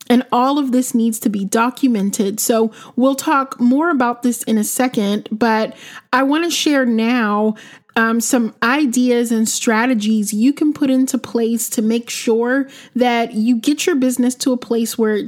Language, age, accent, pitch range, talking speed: English, 30-49, American, 225-260 Hz, 175 wpm